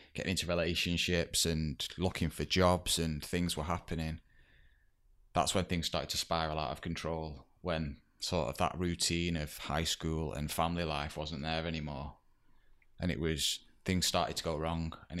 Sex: male